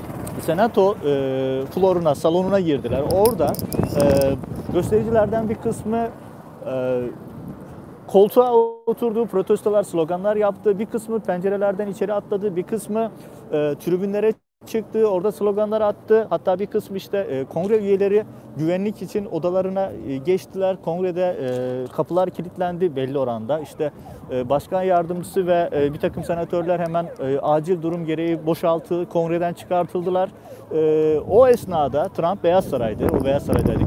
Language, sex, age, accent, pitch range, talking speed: Turkish, male, 40-59, native, 150-200 Hz, 130 wpm